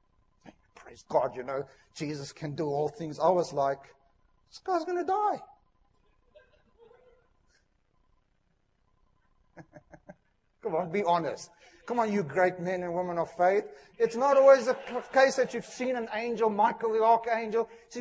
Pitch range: 175-255 Hz